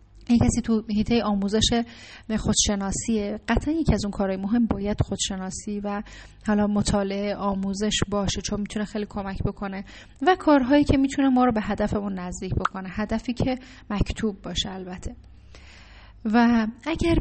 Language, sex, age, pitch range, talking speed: Persian, female, 10-29, 190-225 Hz, 145 wpm